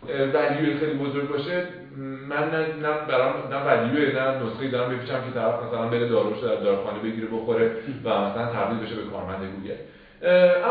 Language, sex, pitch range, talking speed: Persian, male, 110-165 Hz, 155 wpm